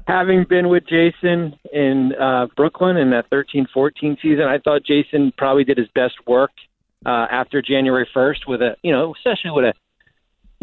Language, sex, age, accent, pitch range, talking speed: English, male, 40-59, American, 120-150 Hz, 180 wpm